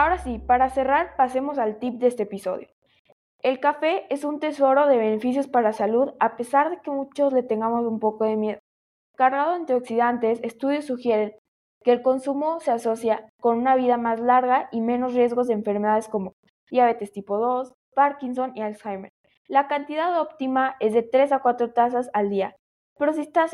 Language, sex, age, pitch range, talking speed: Spanish, female, 10-29, 215-270 Hz, 185 wpm